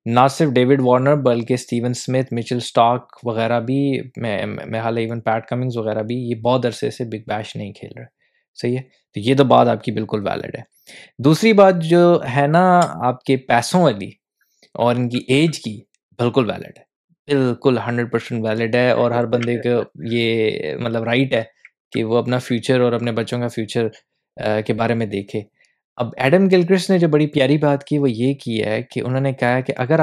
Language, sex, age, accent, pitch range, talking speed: English, male, 20-39, Indian, 115-135 Hz, 125 wpm